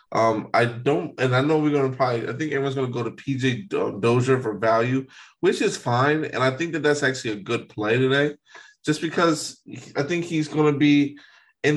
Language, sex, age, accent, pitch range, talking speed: English, male, 20-39, American, 115-135 Hz, 220 wpm